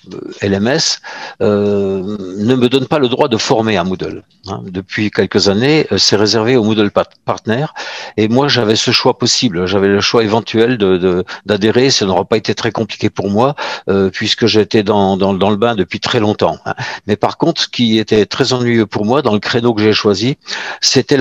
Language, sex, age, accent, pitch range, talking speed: French, male, 50-69, French, 105-125 Hz, 205 wpm